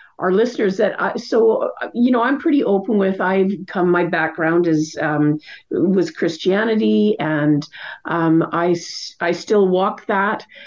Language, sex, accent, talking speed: English, female, American, 140 wpm